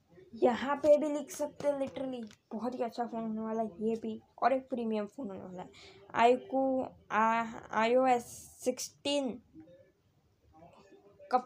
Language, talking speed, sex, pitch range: Hindi, 145 wpm, female, 215-250 Hz